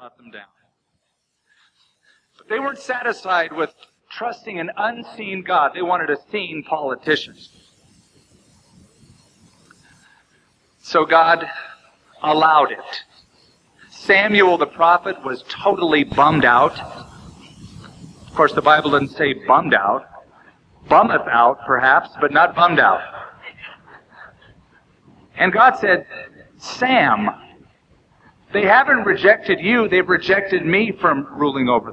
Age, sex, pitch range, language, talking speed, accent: 50-69, male, 145-190 Hz, English, 105 wpm, American